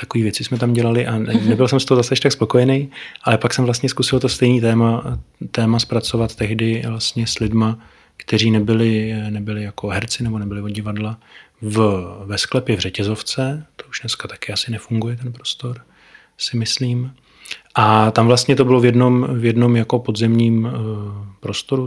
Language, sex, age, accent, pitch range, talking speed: Czech, male, 30-49, native, 105-120 Hz, 170 wpm